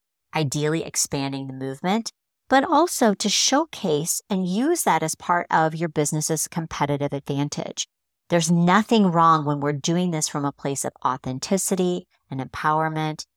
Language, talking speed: English, 145 wpm